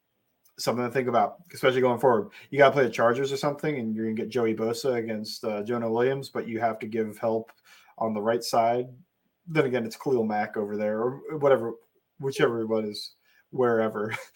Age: 20-39